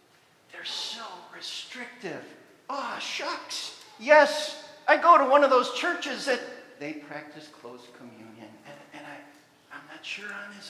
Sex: male